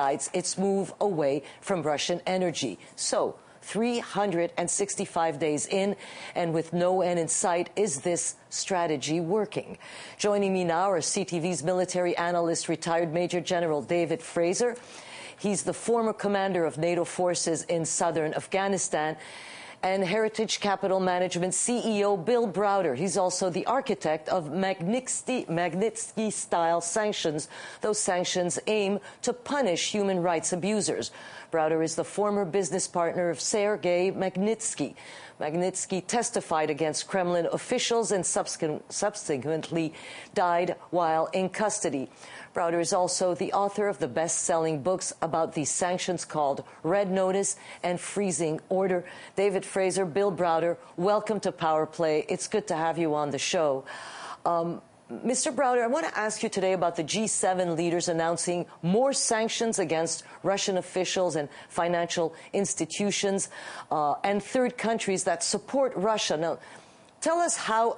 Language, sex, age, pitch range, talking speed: English, female, 50-69, 170-200 Hz, 135 wpm